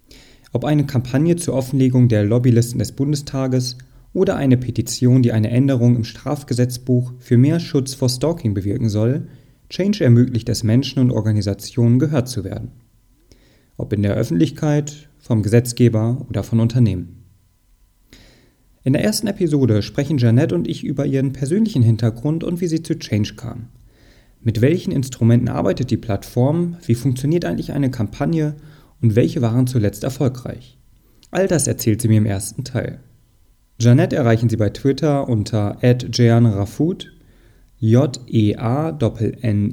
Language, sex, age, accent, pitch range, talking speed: German, male, 30-49, German, 115-140 Hz, 145 wpm